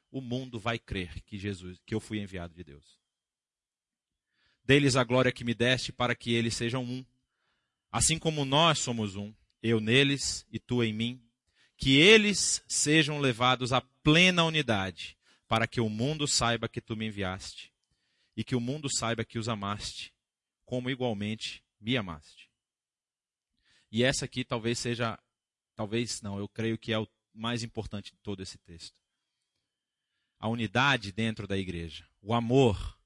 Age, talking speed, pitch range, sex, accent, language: 30-49, 160 wpm, 100-120 Hz, male, Brazilian, English